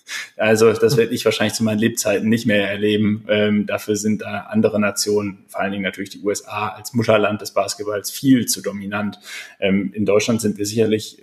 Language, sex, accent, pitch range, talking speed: German, male, German, 100-115 Hz, 200 wpm